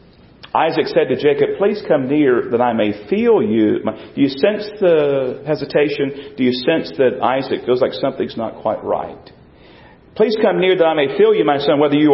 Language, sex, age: English, male, 40-59